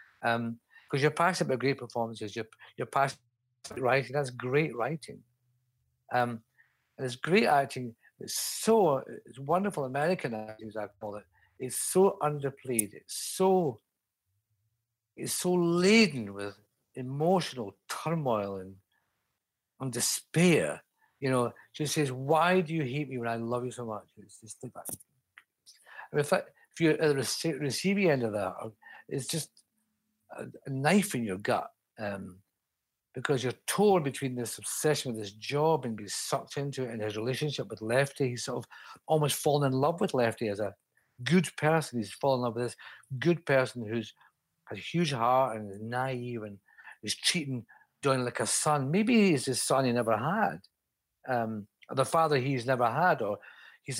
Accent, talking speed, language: British, 170 wpm, English